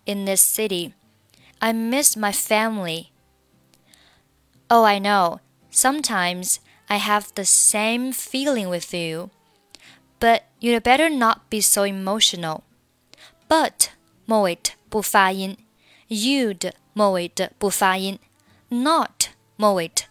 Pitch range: 175-230 Hz